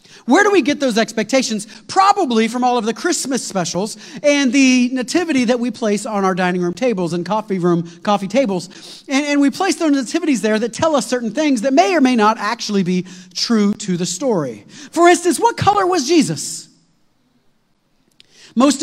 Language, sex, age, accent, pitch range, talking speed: English, male, 40-59, American, 195-270 Hz, 190 wpm